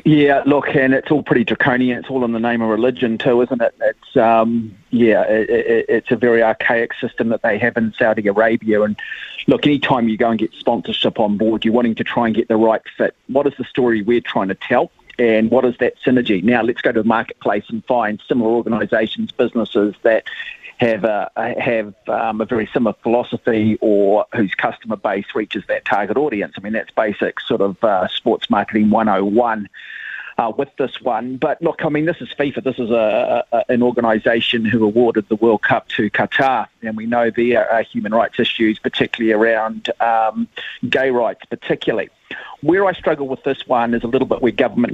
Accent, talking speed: Australian, 200 wpm